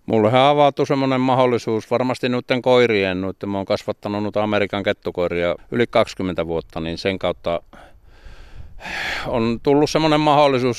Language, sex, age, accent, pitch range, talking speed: Finnish, male, 50-69, native, 95-115 Hz, 135 wpm